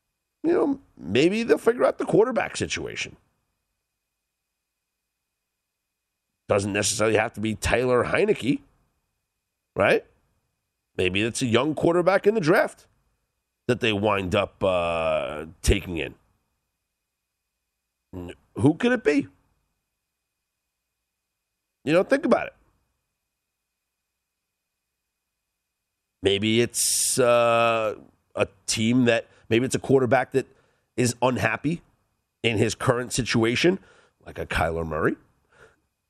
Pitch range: 80-125 Hz